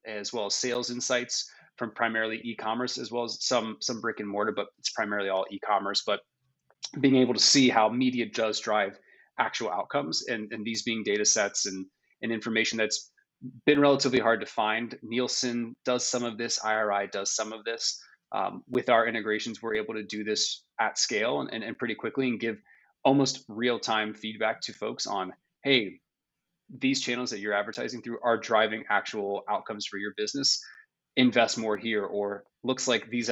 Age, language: 20-39, English